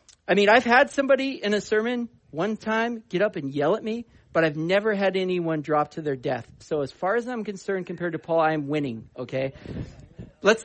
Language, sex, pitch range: English, male, 170-230 Hz